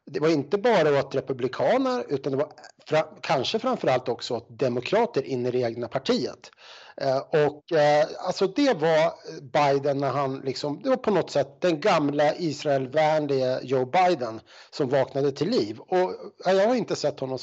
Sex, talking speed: male, 175 wpm